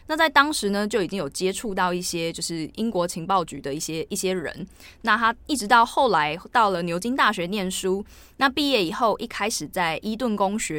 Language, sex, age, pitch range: Chinese, female, 20-39, 175-220 Hz